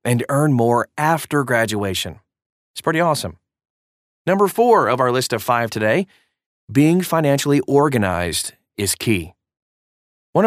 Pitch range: 100-150 Hz